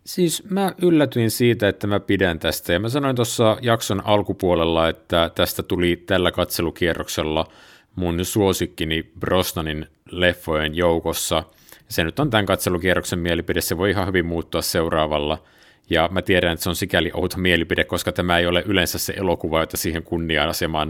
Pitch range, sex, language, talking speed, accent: 80-100 Hz, male, Finnish, 160 wpm, native